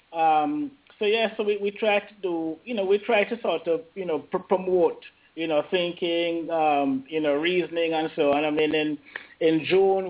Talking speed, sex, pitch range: 210 wpm, male, 140-160 Hz